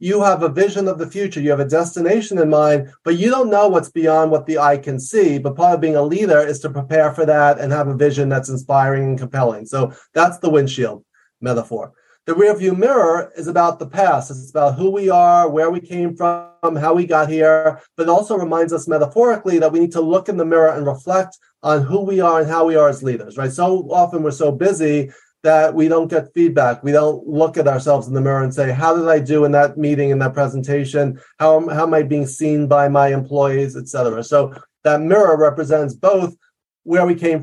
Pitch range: 140-170 Hz